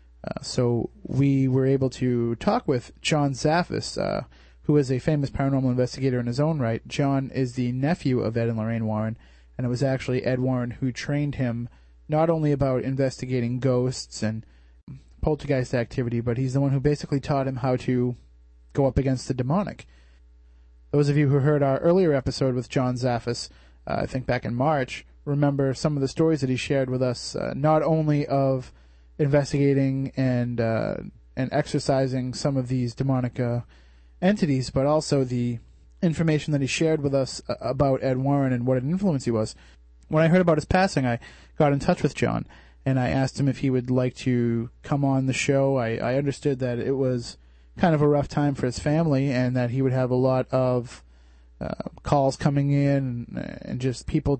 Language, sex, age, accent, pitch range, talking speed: English, male, 30-49, American, 120-145 Hz, 195 wpm